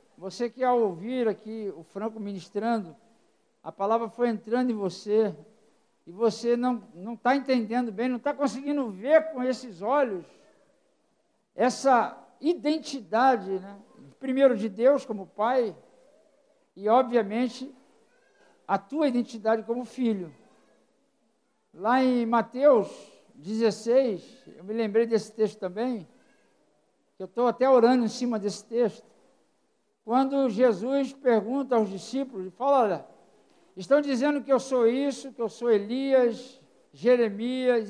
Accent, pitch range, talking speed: Brazilian, 220-275 Hz, 125 wpm